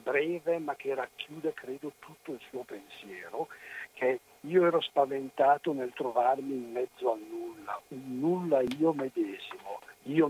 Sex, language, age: male, Italian, 60-79